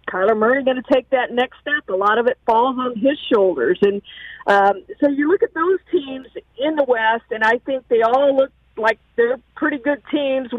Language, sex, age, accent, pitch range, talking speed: English, female, 50-69, American, 220-275 Hz, 215 wpm